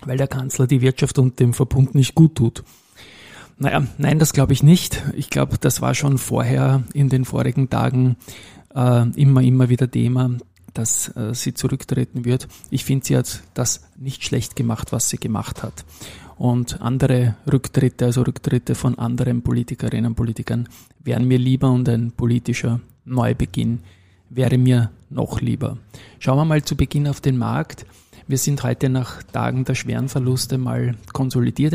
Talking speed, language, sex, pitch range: 165 wpm, German, male, 120-135 Hz